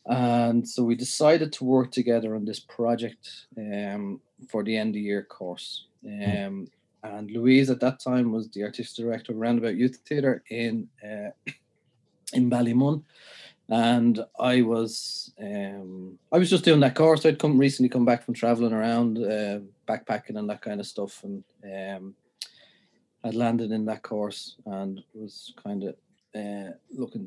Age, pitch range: 30-49, 100-125 Hz